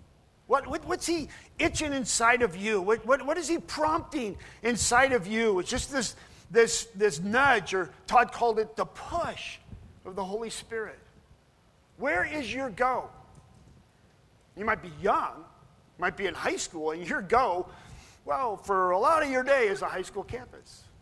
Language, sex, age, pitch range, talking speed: English, male, 50-69, 185-250 Hz, 170 wpm